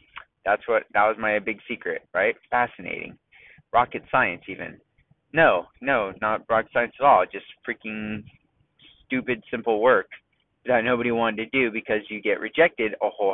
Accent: American